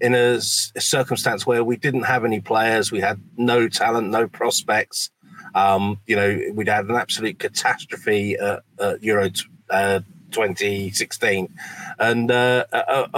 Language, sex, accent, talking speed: English, male, British, 140 wpm